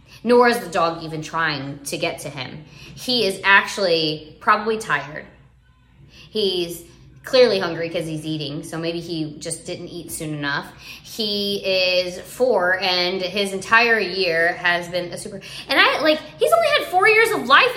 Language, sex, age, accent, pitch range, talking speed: English, female, 20-39, American, 165-235 Hz, 170 wpm